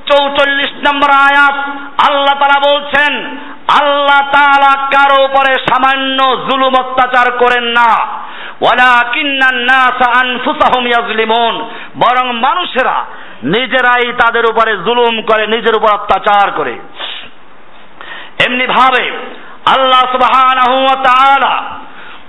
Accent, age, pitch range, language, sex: native, 50-69, 250-285 Hz, Bengali, male